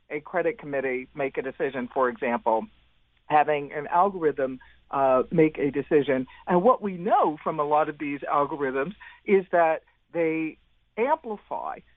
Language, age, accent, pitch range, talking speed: English, 50-69, American, 145-185 Hz, 145 wpm